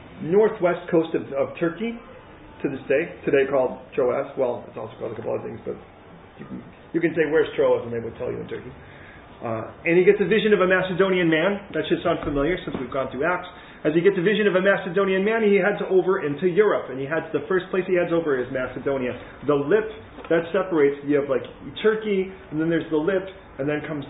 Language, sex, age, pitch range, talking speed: English, male, 40-59, 140-195 Hz, 230 wpm